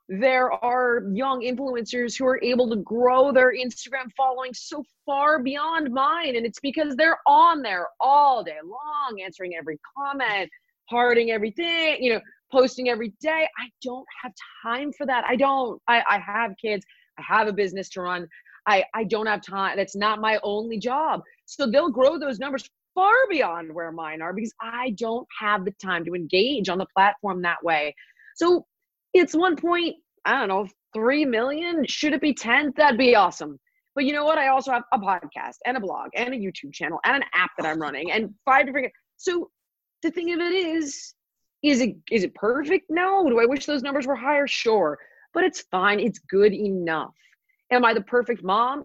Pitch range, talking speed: 205-290 Hz, 195 wpm